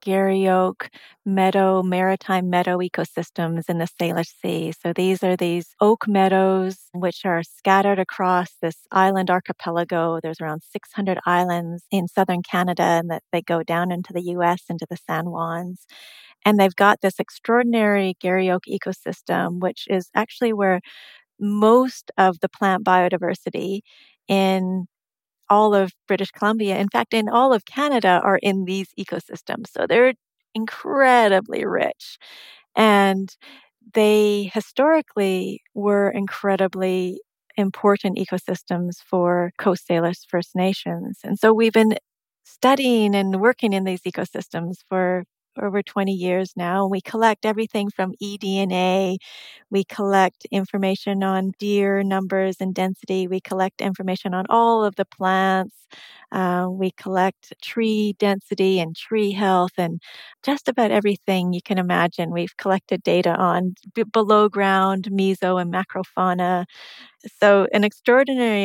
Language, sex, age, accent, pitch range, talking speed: English, female, 40-59, American, 180-205 Hz, 135 wpm